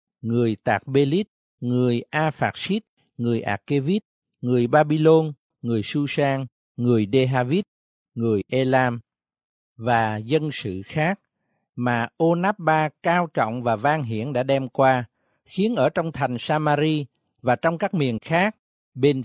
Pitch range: 120-160 Hz